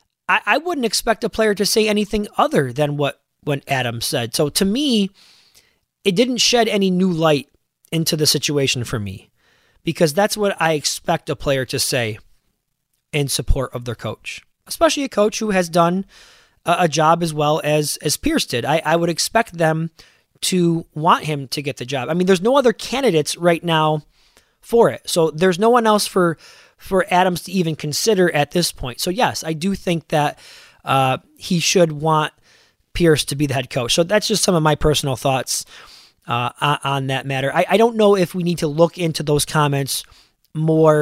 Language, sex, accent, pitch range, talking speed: English, male, American, 145-185 Hz, 200 wpm